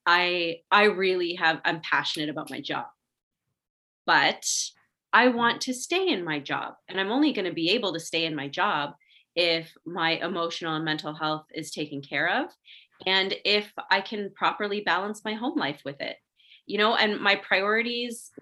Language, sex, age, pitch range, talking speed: English, female, 30-49, 170-205 Hz, 180 wpm